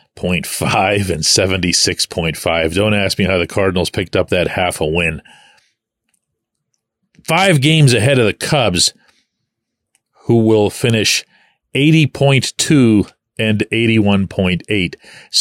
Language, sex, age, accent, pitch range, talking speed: English, male, 40-59, American, 100-145 Hz, 110 wpm